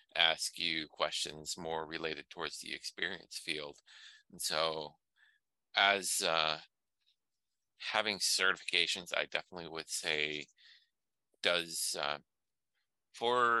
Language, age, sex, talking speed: English, 30-49, male, 95 wpm